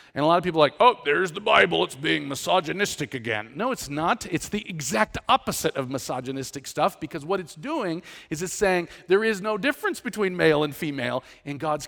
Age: 40-59